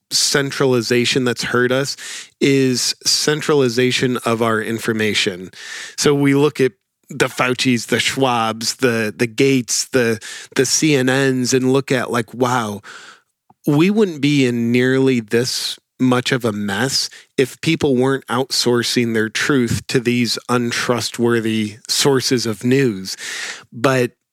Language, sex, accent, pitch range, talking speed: English, male, American, 115-130 Hz, 125 wpm